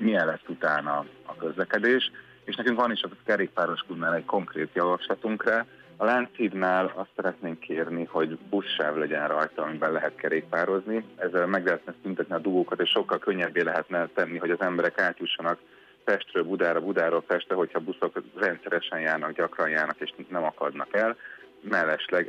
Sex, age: male, 30-49